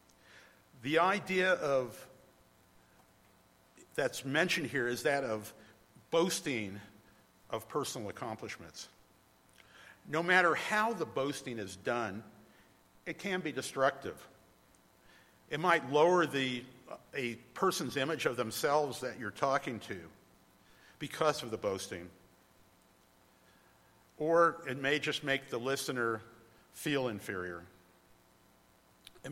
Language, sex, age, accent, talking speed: English, male, 50-69, American, 105 wpm